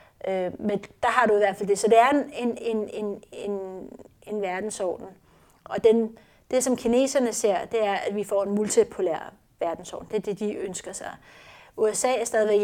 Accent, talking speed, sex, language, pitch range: native, 190 wpm, female, Danish, 195-230 Hz